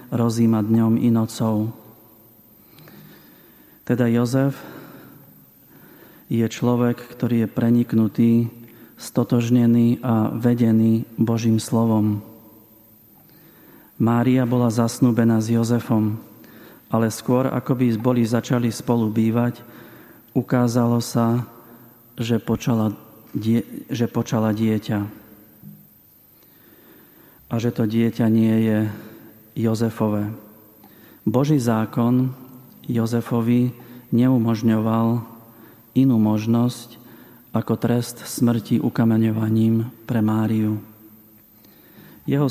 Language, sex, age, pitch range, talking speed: Slovak, male, 40-59, 110-125 Hz, 80 wpm